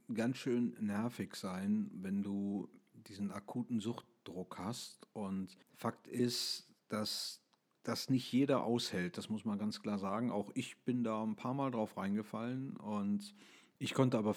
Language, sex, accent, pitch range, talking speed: German, male, German, 100-115 Hz, 155 wpm